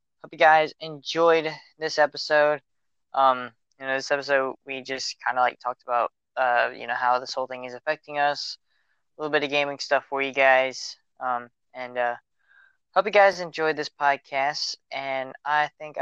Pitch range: 135-155 Hz